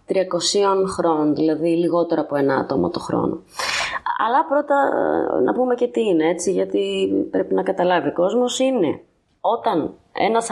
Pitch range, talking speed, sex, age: 150-225 Hz, 150 wpm, female, 20-39